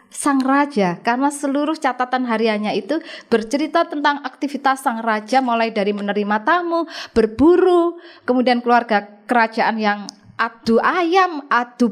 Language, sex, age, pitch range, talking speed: Indonesian, female, 20-39, 210-265 Hz, 120 wpm